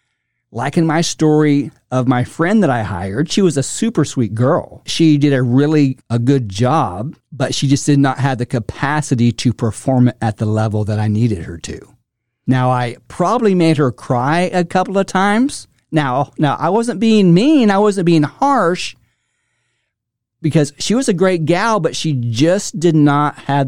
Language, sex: English, male